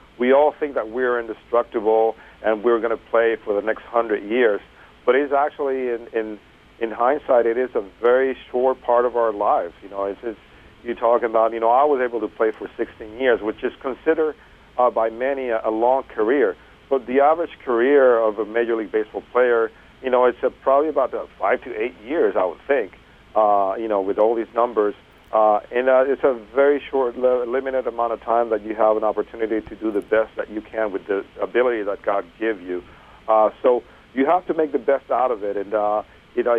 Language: English